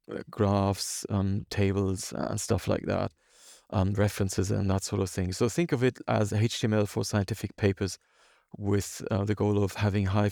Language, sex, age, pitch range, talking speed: English, male, 40-59, 100-115 Hz, 175 wpm